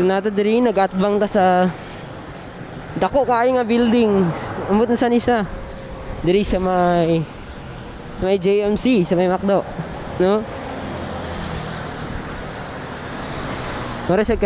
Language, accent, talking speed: English, Filipino, 65 wpm